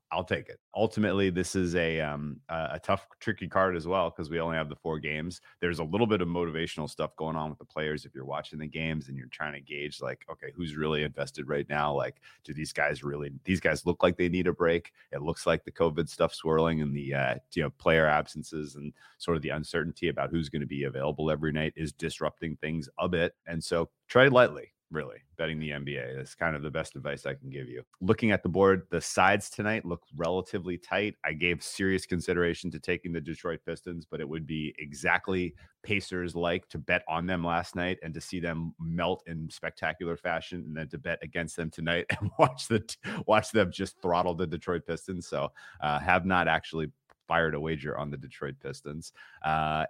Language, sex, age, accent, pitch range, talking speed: English, male, 30-49, American, 75-90 Hz, 220 wpm